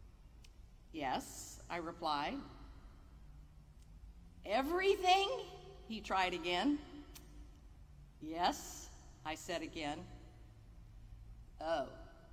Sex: female